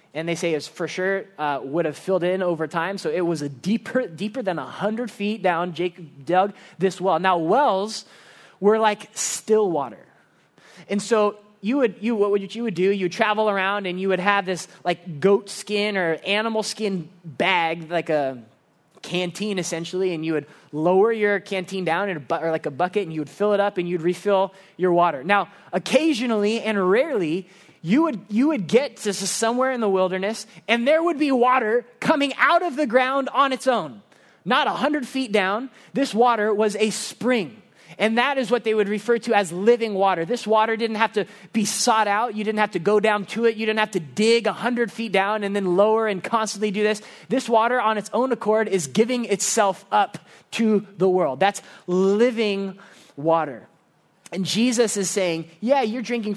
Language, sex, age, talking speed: English, male, 20-39, 205 wpm